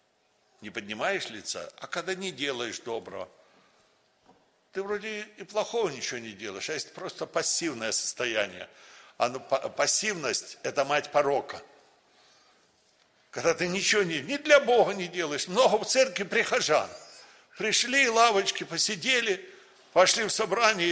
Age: 60-79